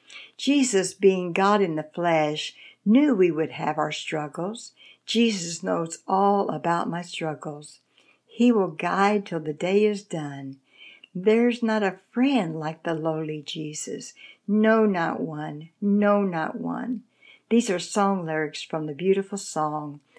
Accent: American